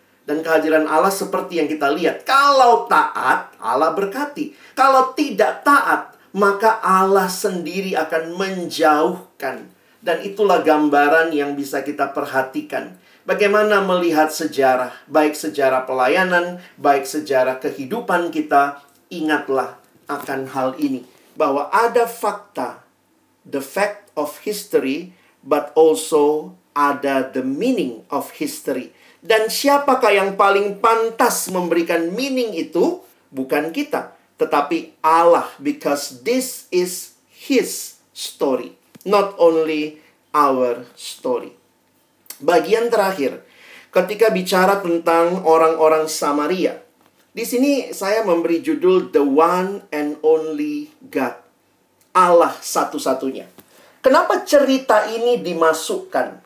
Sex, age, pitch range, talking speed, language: male, 50-69, 150-225 Hz, 105 wpm, Indonesian